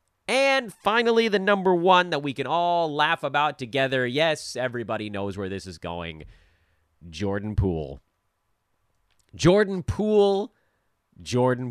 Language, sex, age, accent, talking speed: English, male, 30-49, American, 125 wpm